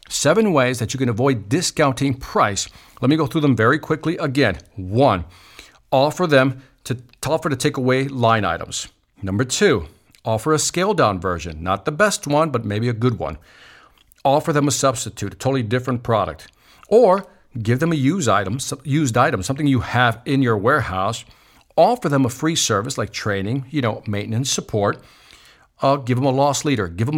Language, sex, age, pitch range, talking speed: English, male, 50-69, 105-145 Hz, 185 wpm